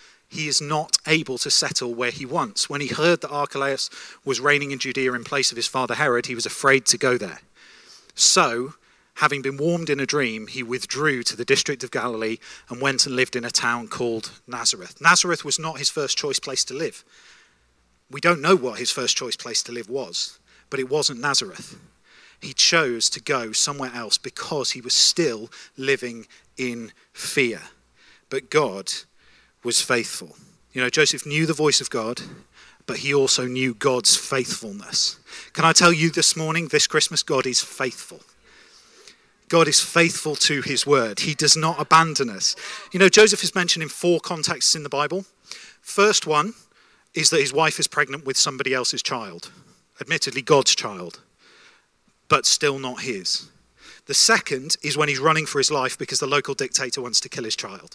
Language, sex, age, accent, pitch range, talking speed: English, male, 40-59, British, 125-160 Hz, 185 wpm